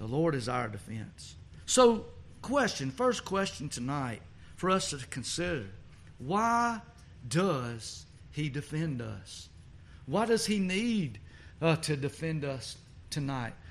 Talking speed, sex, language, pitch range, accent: 125 wpm, male, English, 130-190 Hz, American